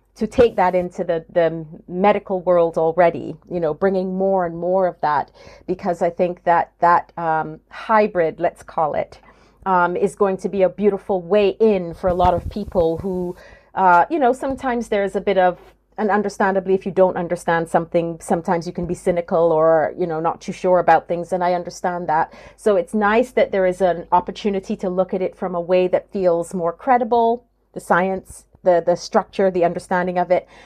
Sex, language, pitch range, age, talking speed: female, English, 170-195 Hz, 40-59, 200 wpm